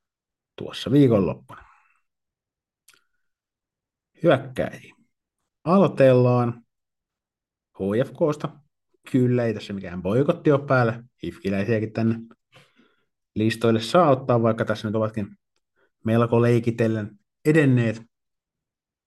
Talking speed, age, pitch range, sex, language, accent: 75 wpm, 50-69, 110-140 Hz, male, Finnish, native